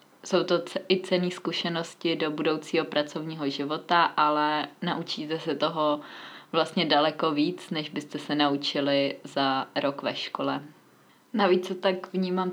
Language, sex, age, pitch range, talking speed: Czech, female, 20-39, 160-180 Hz, 135 wpm